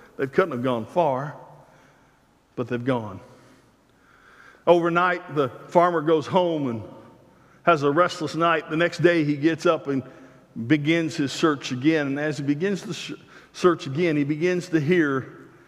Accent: American